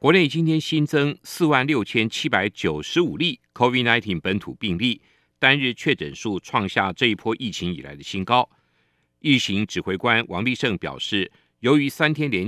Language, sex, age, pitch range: Chinese, male, 50-69, 110-135 Hz